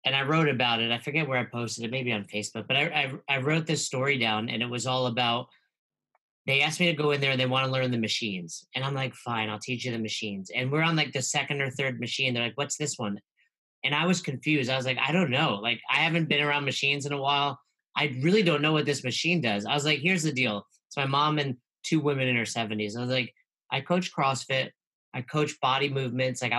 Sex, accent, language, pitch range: male, American, English, 125-155 Hz